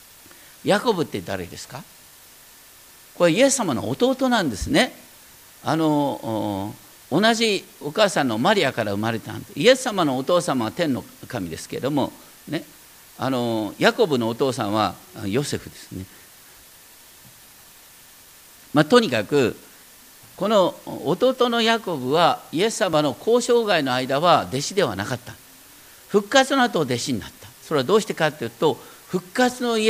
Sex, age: male, 50-69